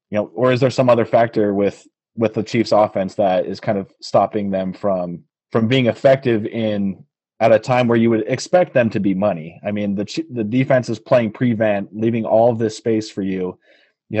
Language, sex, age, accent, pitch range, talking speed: English, male, 30-49, American, 105-125 Hz, 210 wpm